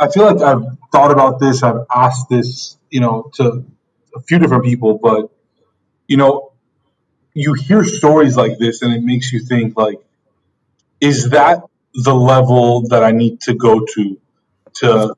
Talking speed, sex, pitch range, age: 165 wpm, male, 120-155 Hz, 30-49